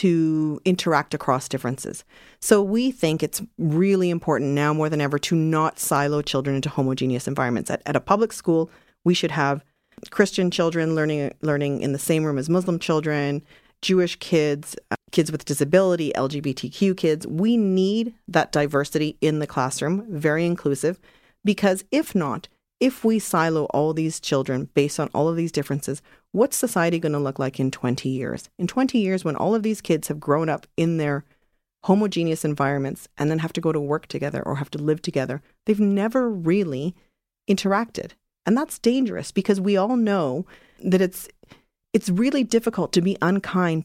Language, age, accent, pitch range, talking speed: English, 40-59, American, 145-190 Hz, 175 wpm